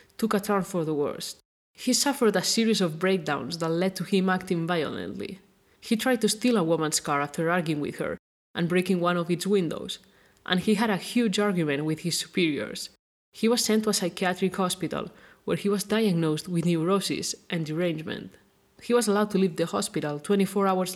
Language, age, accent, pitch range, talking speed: English, 30-49, Spanish, 170-205 Hz, 195 wpm